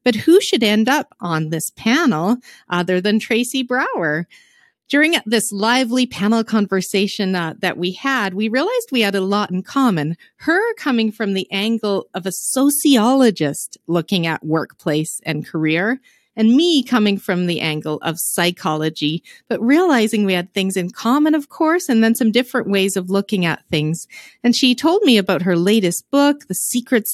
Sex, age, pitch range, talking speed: female, 40-59, 185-250 Hz, 170 wpm